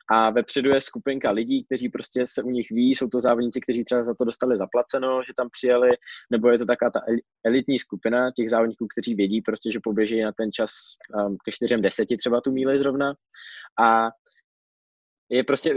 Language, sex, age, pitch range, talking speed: Czech, male, 20-39, 110-130 Hz, 195 wpm